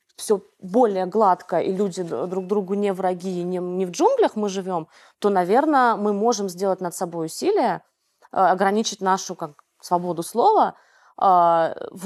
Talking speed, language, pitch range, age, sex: 150 wpm, Russian, 195-245 Hz, 20-39, female